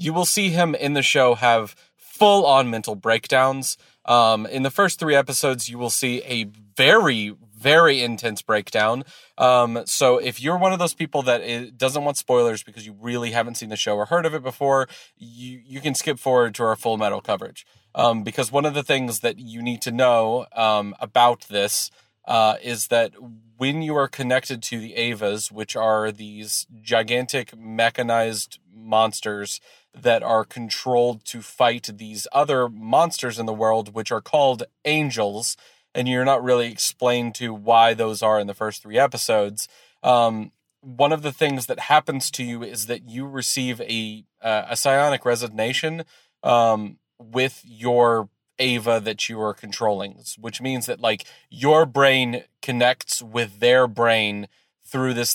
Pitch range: 110-130 Hz